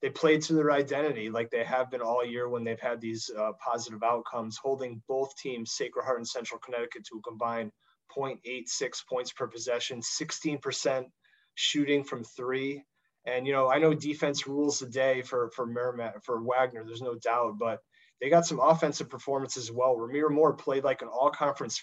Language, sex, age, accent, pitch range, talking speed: English, male, 30-49, American, 125-145 Hz, 190 wpm